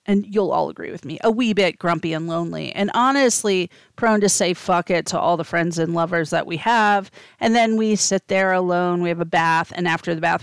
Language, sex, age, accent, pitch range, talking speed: English, female, 40-59, American, 175-220 Hz, 240 wpm